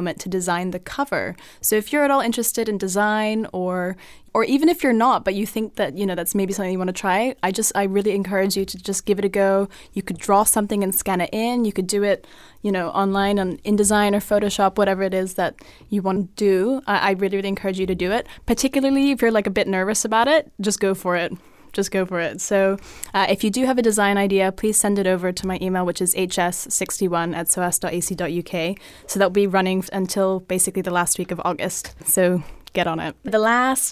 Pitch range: 185-210 Hz